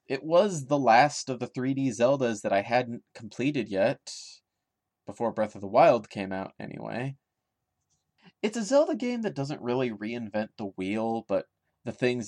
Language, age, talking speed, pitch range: English, 30-49, 165 wpm, 105-125 Hz